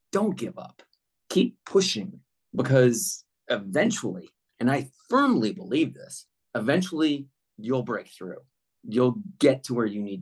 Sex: male